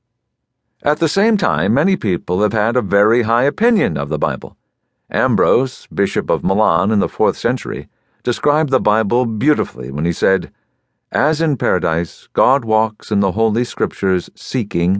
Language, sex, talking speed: English, male, 160 wpm